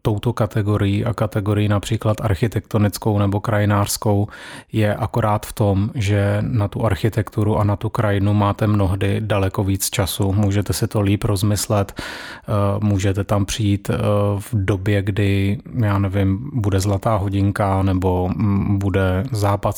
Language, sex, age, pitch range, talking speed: Czech, male, 30-49, 100-110 Hz, 135 wpm